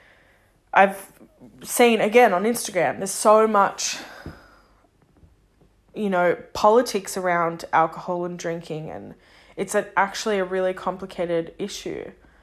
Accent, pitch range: Australian, 185-230 Hz